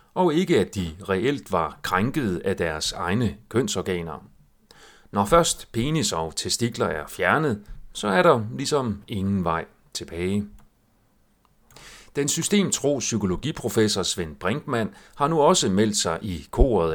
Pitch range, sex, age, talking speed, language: 90-145 Hz, male, 40-59, 125 wpm, Danish